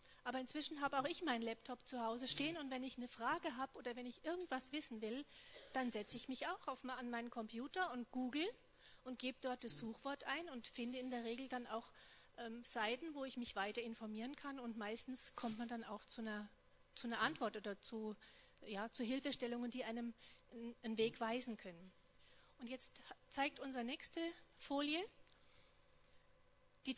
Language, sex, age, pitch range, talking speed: German, female, 40-59, 230-280 Hz, 185 wpm